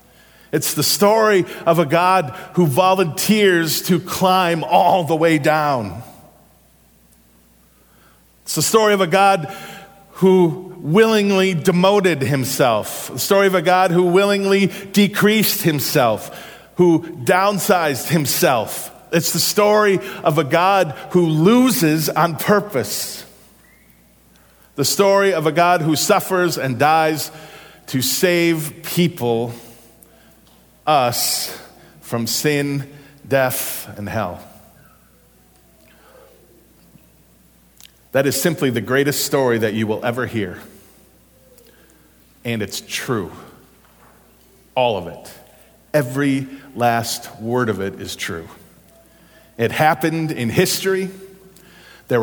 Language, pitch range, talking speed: English, 130-185 Hz, 105 wpm